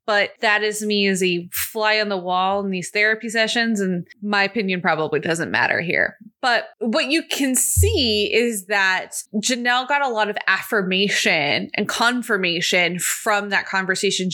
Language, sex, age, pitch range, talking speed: English, female, 20-39, 190-235 Hz, 165 wpm